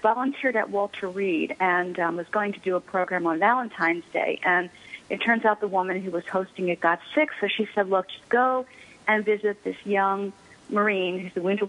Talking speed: 210 wpm